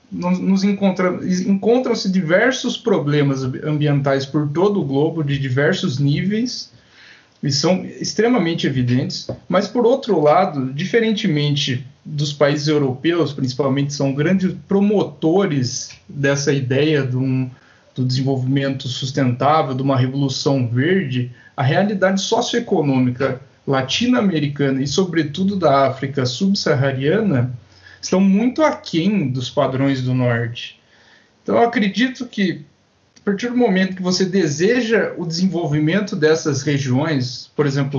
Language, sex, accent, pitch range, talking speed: Portuguese, male, Brazilian, 135-195 Hz, 110 wpm